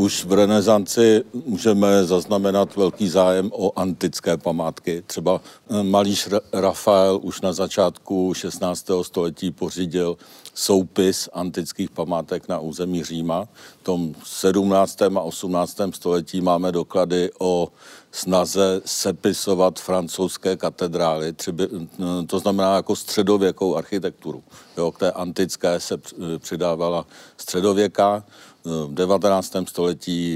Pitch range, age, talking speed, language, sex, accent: 85-95 Hz, 50-69, 105 wpm, Czech, male, native